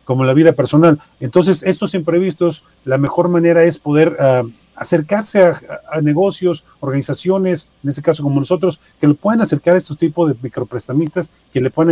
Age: 40-59